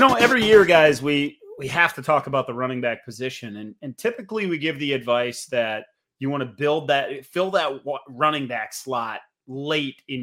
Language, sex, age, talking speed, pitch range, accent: English, male, 30-49, 200 wpm, 130-160 Hz, American